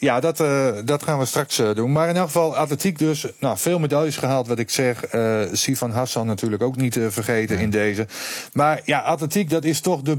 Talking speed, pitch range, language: 225 wpm, 105-135 Hz, Dutch